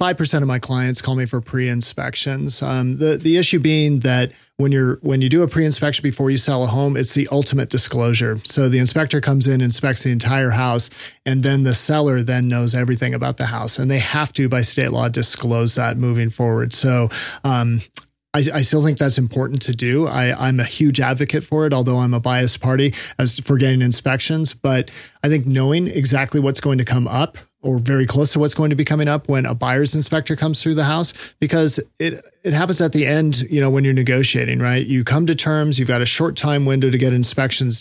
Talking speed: 225 wpm